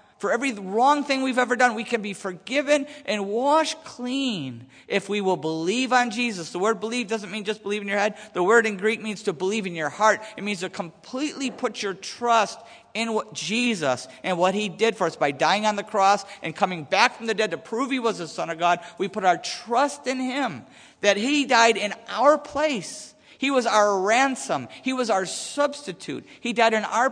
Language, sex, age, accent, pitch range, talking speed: English, male, 50-69, American, 175-235 Hz, 220 wpm